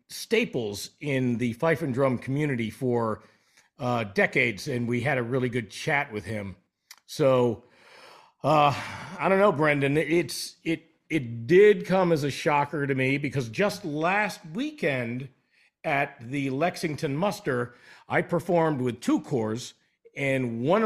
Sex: male